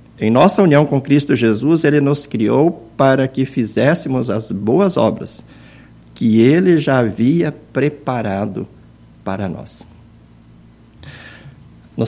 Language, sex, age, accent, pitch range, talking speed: Portuguese, male, 60-79, Brazilian, 115-150 Hz, 115 wpm